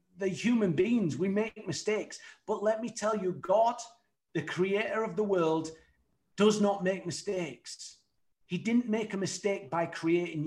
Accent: British